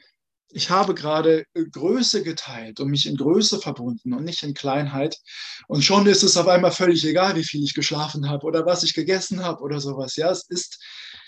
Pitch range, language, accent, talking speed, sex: 135-175 Hz, German, German, 195 wpm, male